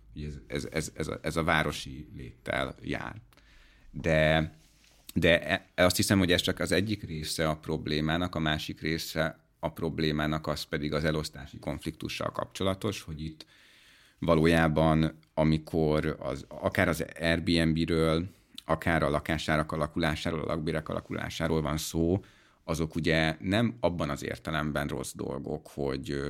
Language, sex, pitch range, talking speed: Hungarian, male, 75-85 Hz, 135 wpm